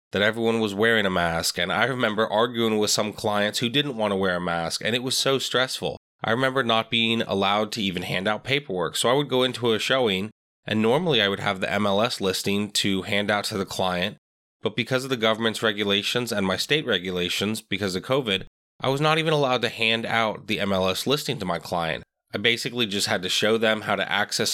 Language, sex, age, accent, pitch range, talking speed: English, male, 20-39, American, 100-120 Hz, 225 wpm